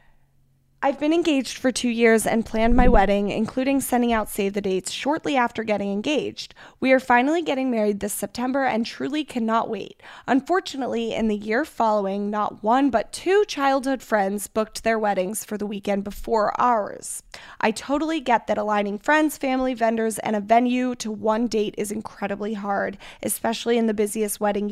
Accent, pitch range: American, 210-255 Hz